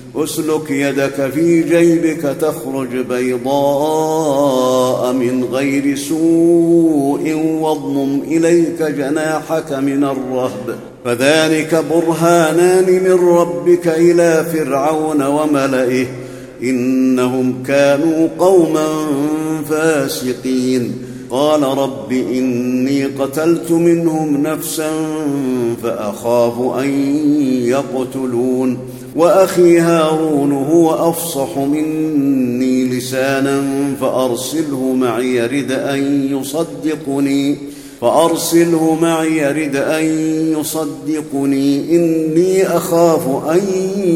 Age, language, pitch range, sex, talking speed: 50-69, Arabic, 135-160 Hz, male, 65 wpm